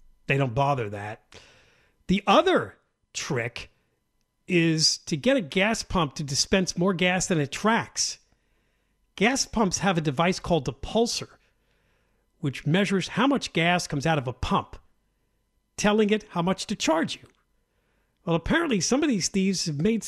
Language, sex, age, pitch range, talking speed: English, male, 50-69, 135-185 Hz, 160 wpm